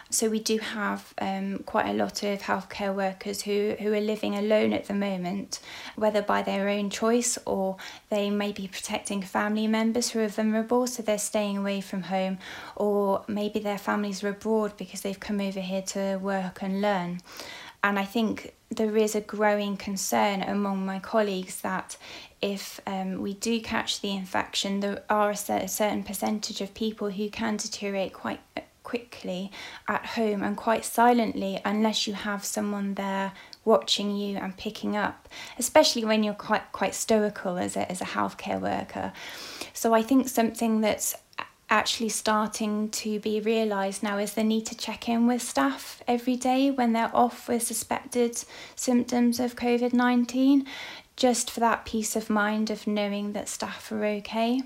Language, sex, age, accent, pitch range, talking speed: English, female, 20-39, British, 200-225 Hz, 170 wpm